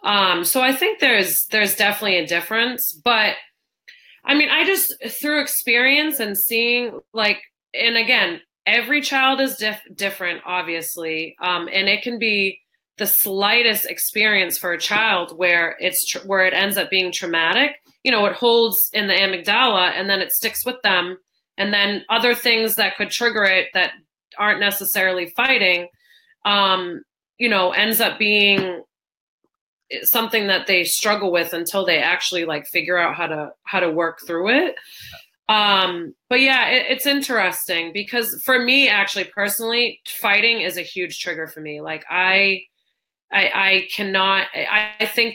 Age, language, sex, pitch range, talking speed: 30-49, English, female, 180-230 Hz, 155 wpm